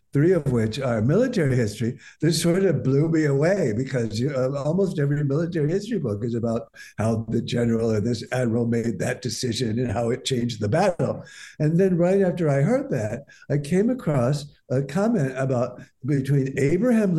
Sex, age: male, 60-79